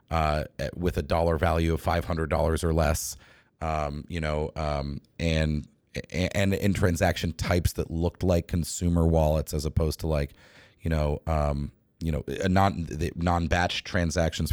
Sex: male